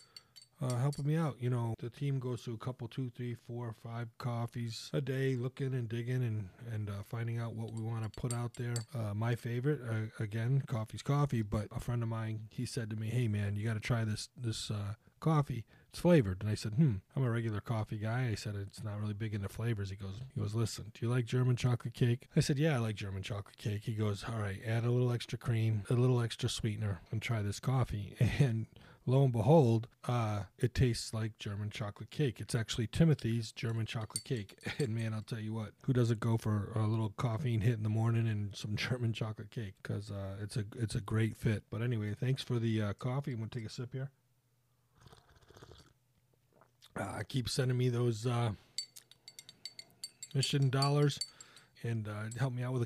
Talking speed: 220 wpm